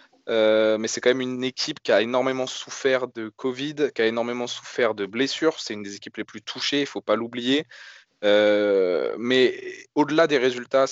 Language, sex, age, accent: French, male, 20-39, French